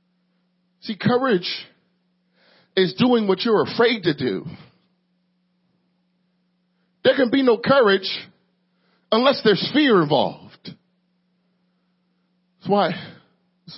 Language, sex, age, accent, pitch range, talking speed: English, male, 40-59, American, 160-200 Hz, 90 wpm